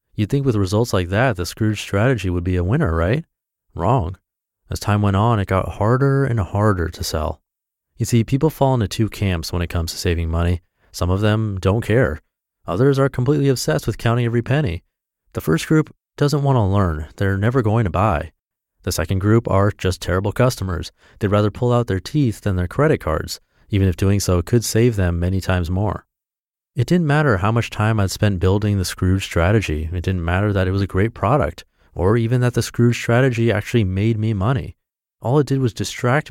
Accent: American